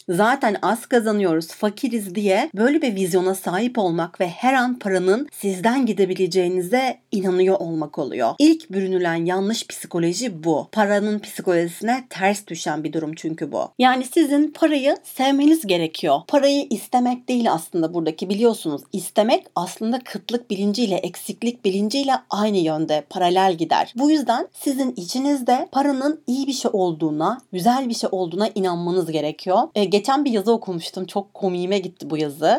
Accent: native